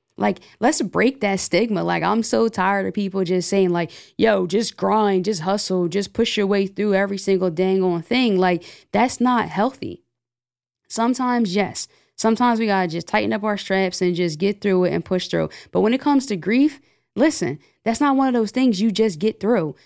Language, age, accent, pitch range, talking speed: English, 20-39, American, 185-215 Hz, 210 wpm